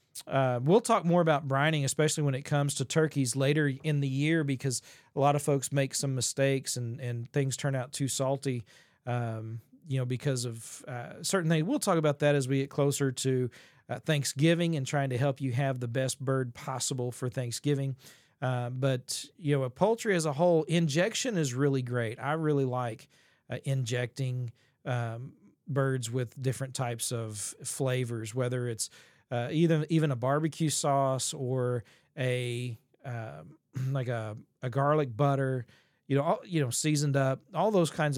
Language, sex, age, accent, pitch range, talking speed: English, male, 40-59, American, 125-150 Hz, 175 wpm